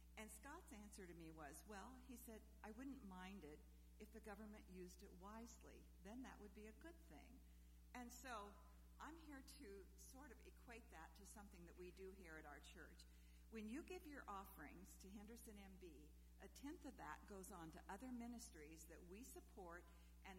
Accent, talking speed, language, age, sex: American, 190 wpm, English, 50-69, female